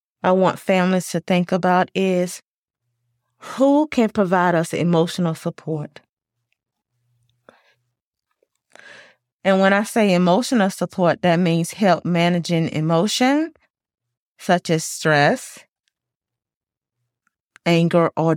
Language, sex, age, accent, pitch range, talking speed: English, female, 30-49, American, 130-185 Hz, 95 wpm